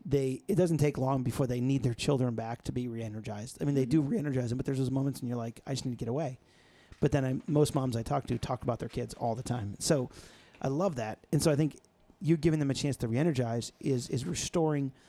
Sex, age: male, 40-59